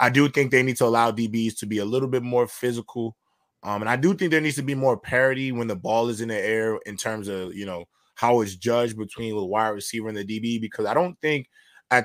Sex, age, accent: male, 20-39, American